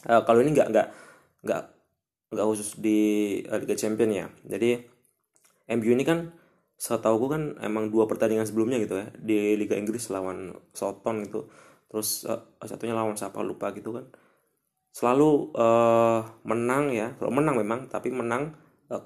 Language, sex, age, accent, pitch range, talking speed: Indonesian, male, 20-39, native, 110-130 Hz, 160 wpm